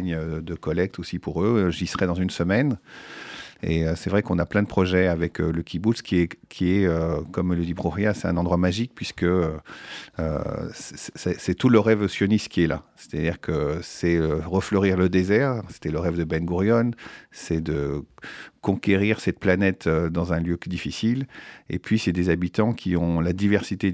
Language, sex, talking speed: French, male, 195 wpm